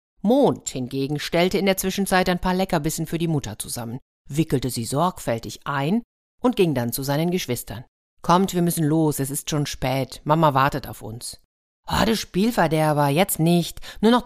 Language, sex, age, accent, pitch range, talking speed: German, female, 50-69, German, 135-195 Hz, 175 wpm